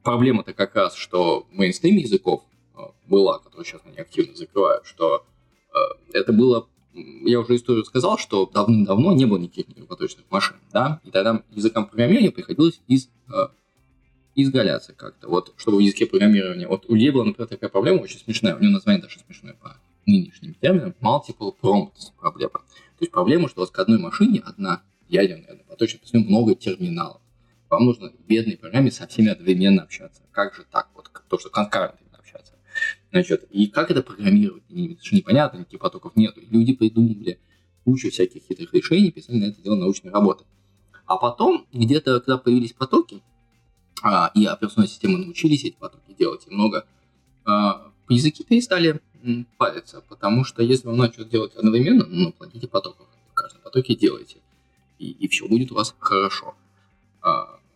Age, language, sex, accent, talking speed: 20-39, Russian, male, native, 165 wpm